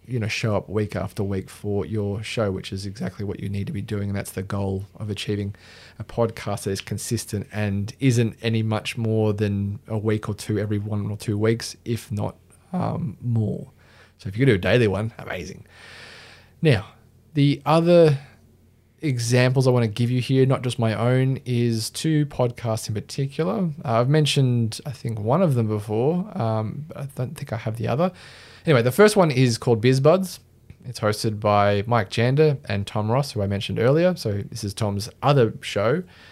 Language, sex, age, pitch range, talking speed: English, male, 20-39, 105-130 Hz, 195 wpm